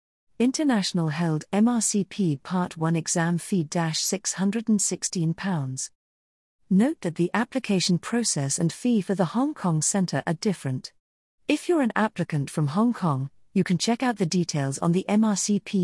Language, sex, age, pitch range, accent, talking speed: English, female, 40-59, 155-210 Hz, British, 145 wpm